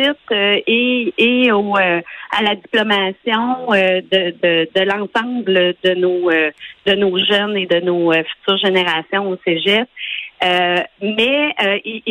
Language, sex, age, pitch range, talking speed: French, female, 40-59, 190-235 Hz, 140 wpm